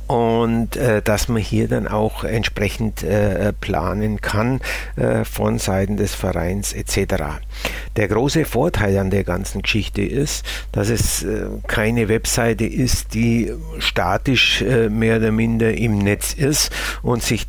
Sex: male